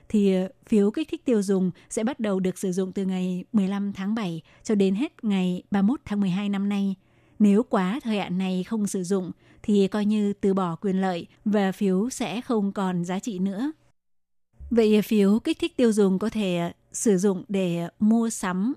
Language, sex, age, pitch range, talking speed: Vietnamese, female, 20-39, 190-225 Hz, 200 wpm